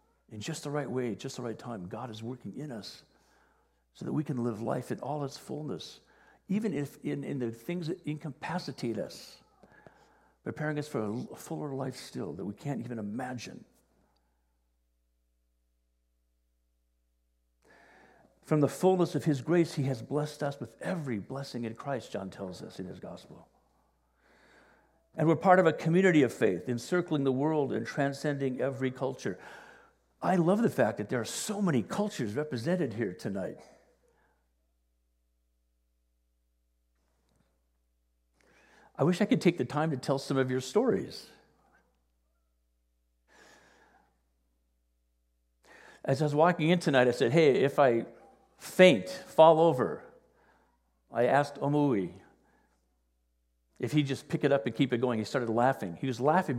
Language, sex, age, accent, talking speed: English, male, 60-79, American, 150 wpm